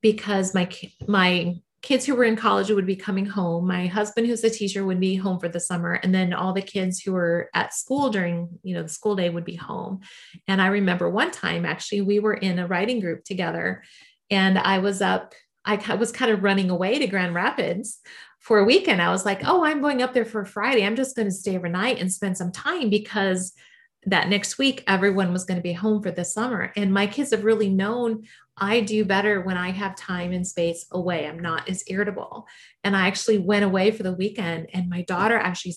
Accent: American